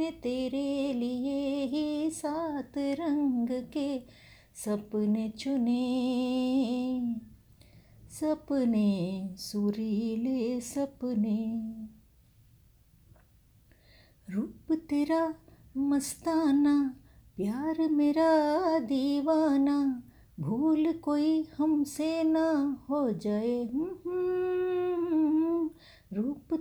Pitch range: 255-315 Hz